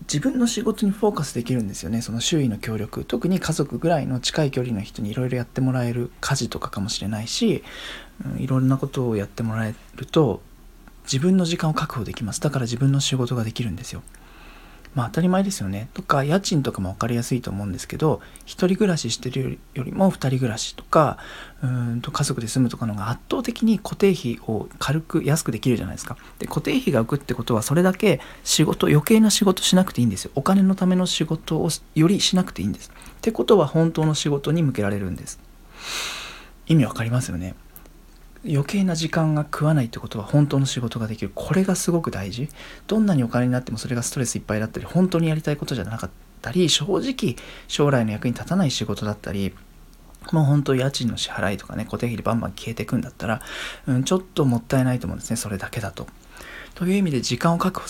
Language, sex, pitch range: Japanese, male, 115-165 Hz